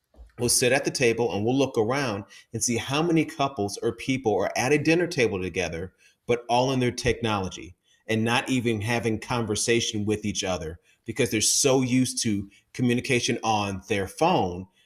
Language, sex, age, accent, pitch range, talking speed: English, male, 30-49, American, 110-135 Hz, 180 wpm